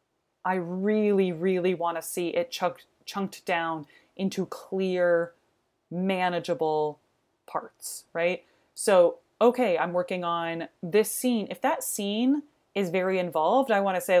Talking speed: 135 wpm